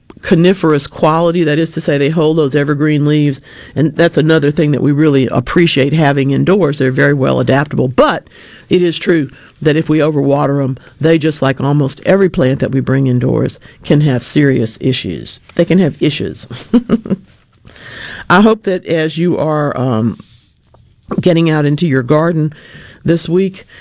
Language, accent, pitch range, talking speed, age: English, American, 140-175 Hz, 165 wpm, 50-69